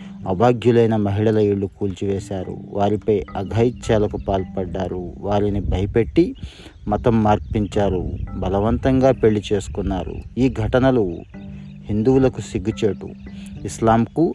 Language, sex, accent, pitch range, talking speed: Telugu, male, native, 100-115 Hz, 80 wpm